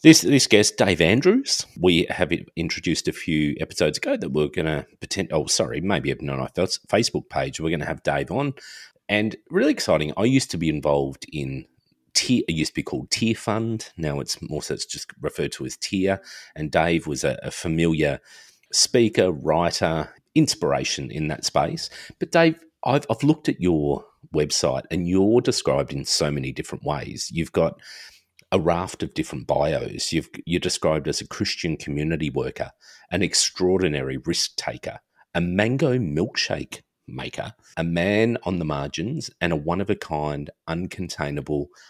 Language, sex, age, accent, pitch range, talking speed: English, male, 40-59, Australian, 75-115 Hz, 170 wpm